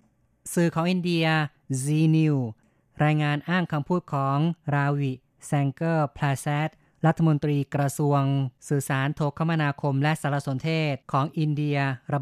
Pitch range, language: 140-160 Hz, Thai